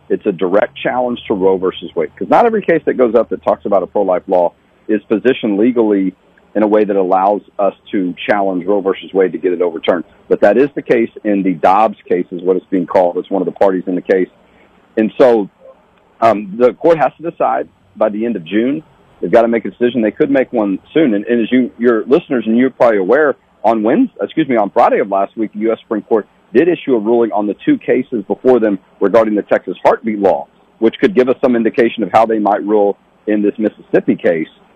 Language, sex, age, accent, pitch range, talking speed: English, male, 40-59, American, 100-125 Hz, 240 wpm